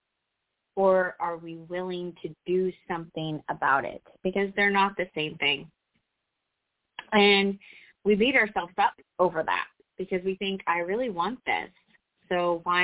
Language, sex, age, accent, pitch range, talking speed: English, female, 30-49, American, 175-220 Hz, 145 wpm